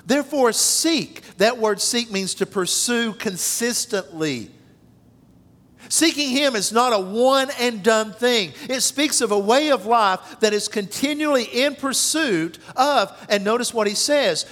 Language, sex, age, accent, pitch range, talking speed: English, male, 50-69, American, 140-225 Hz, 150 wpm